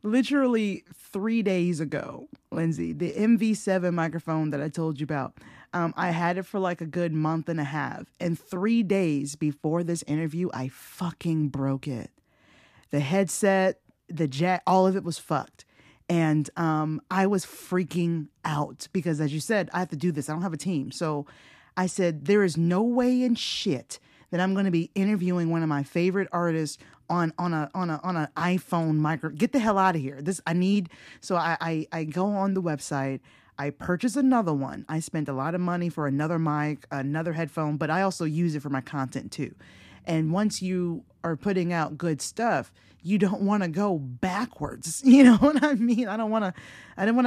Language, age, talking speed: English, 20-39, 200 wpm